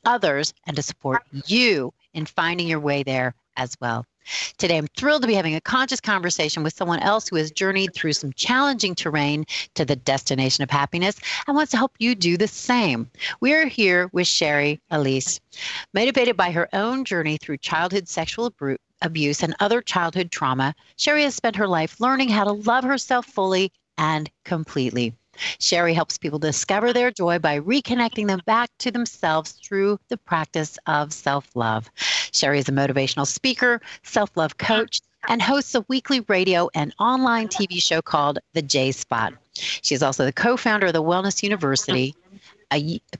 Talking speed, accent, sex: 180 wpm, American, female